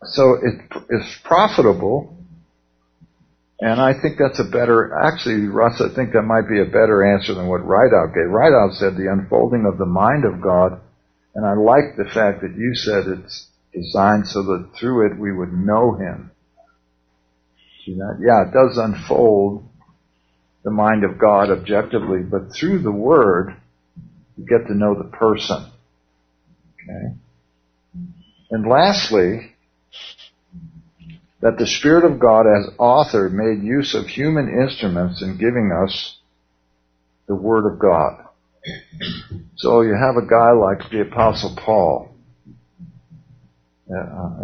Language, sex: English, male